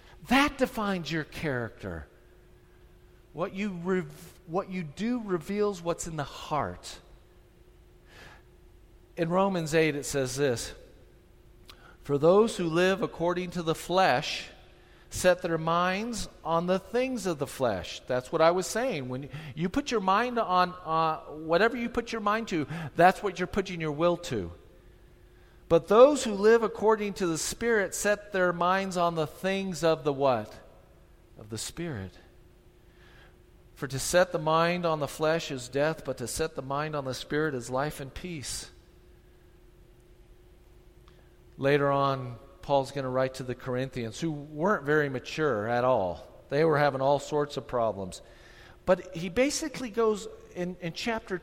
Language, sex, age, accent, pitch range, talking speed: English, male, 50-69, American, 130-185 Hz, 155 wpm